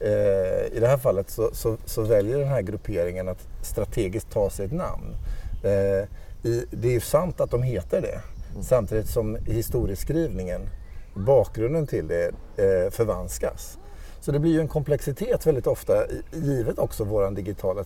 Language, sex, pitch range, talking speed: Swedish, male, 105-160 Hz, 160 wpm